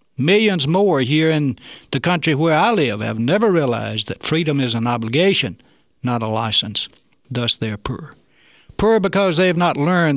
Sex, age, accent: male, 60-79, American